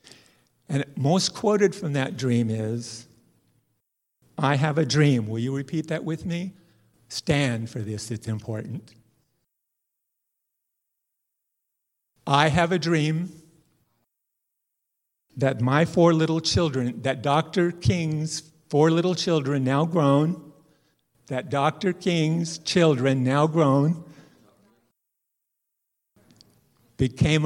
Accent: American